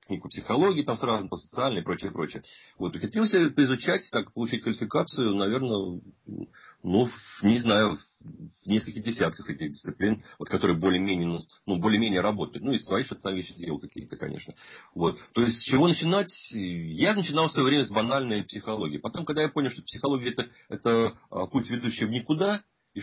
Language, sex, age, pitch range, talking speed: Russian, male, 40-59, 95-140 Hz, 165 wpm